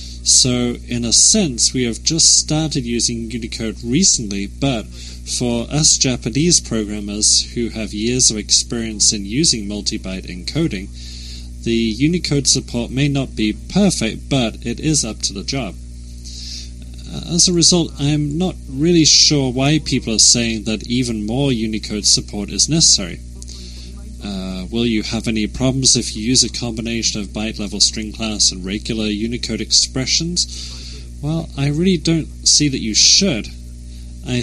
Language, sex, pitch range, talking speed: English, male, 95-130 Hz, 150 wpm